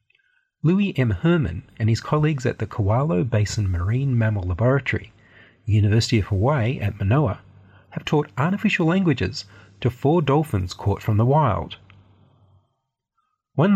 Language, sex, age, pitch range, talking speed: English, male, 30-49, 100-135 Hz, 130 wpm